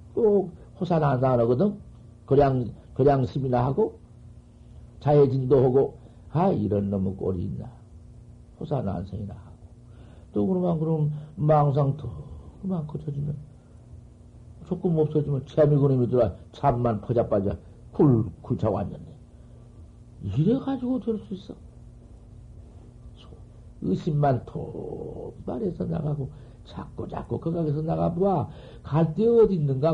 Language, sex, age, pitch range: Korean, male, 60-79, 115-155 Hz